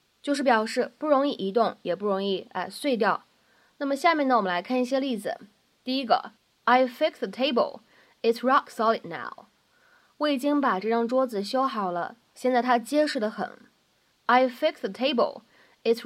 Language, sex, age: Chinese, female, 20-39